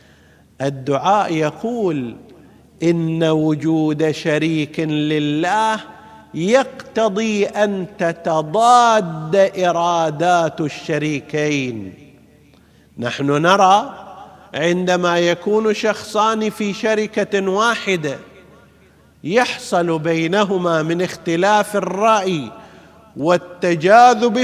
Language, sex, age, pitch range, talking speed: Arabic, male, 50-69, 150-200 Hz, 60 wpm